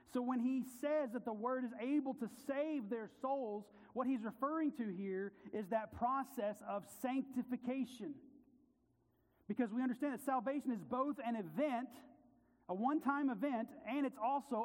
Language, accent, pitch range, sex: English, American, 210-260 Hz, male